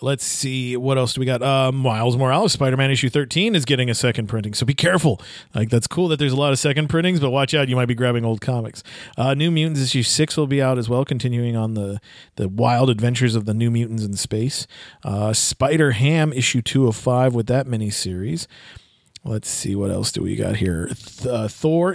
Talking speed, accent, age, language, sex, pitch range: 220 wpm, American, 40-59, English, male, 115-145 Hz